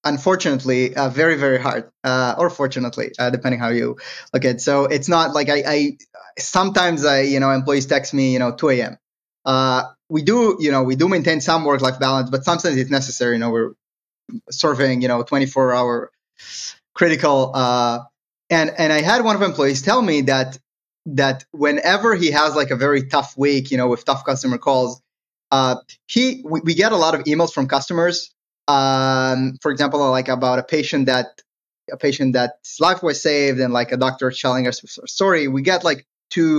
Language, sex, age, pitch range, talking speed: English, male, 20-39, 130-160 Hz, 195 wpm